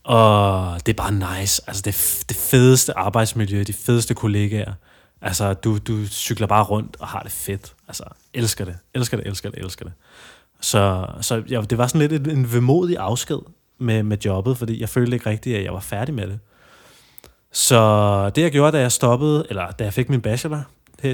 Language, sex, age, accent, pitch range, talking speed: Danish, male, 20-39, native, 100-125 Hz, 200 wpm